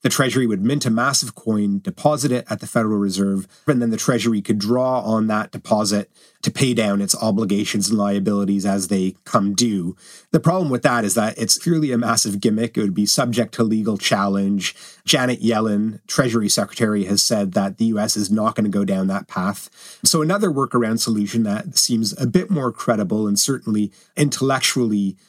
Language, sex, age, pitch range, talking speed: English, male, 30-49, 105-125 Hz, 190 wpm